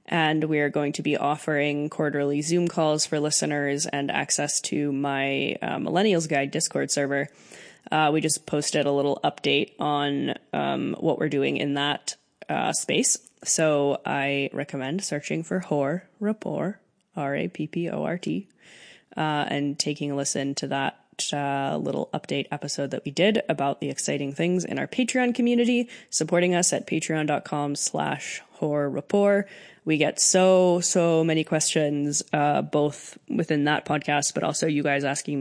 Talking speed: 150 wpm